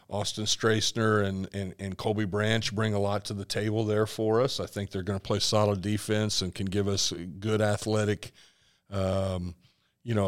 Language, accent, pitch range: English, American, 100-115 Hz